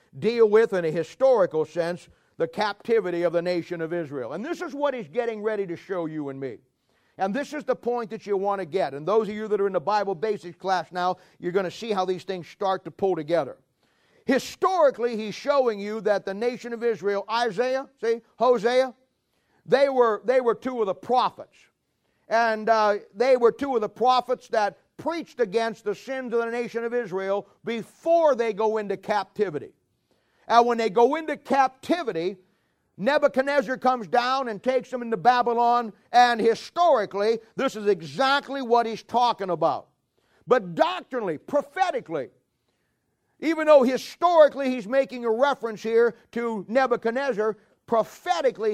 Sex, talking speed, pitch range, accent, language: male, 170 wpm, 185-245 Hz, American, English